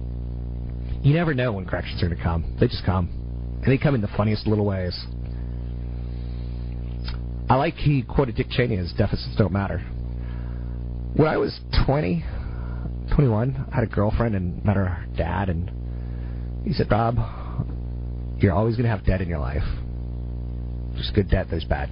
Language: English